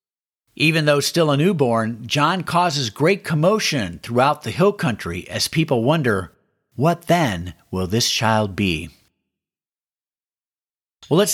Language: English